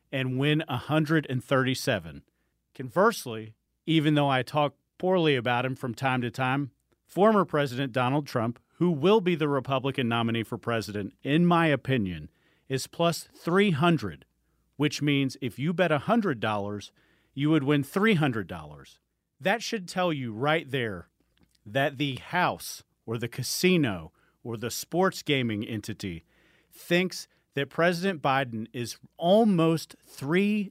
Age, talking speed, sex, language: 40-59, 130 wpm, male, English